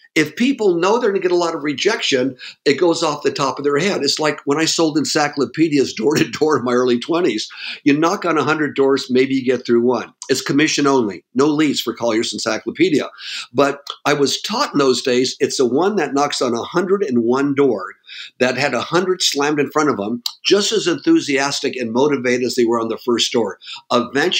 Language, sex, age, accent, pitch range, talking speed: English, male, 50-69, American, 125-165 Hz, 215 wpm